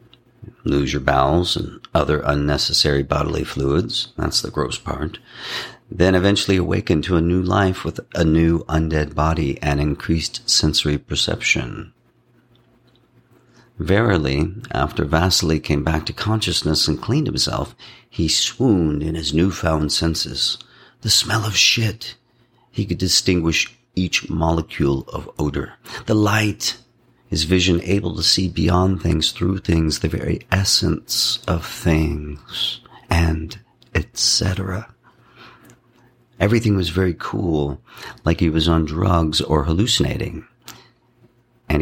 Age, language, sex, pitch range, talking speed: 50-69, English, male, 80-100 Hz, 120 wpm